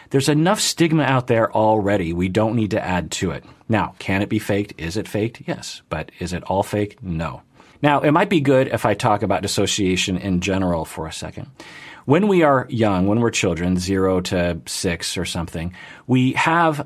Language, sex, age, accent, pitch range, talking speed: English, male, 40-59, American, 90-115 Hz, 205 wpm